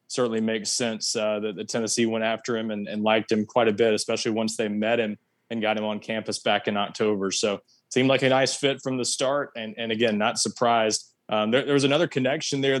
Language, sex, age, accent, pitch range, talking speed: English, male, 20-39, American, 110-125 Hz, 240 wpm